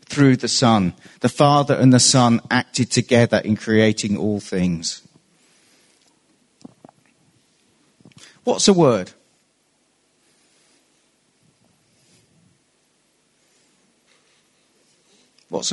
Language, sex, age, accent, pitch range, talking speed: English, male, 40-59, British, 110-170 Hz, 70 wpm